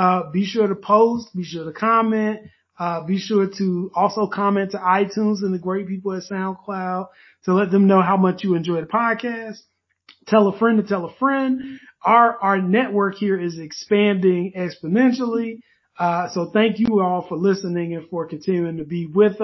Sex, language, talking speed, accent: male, English, 185 wpm, American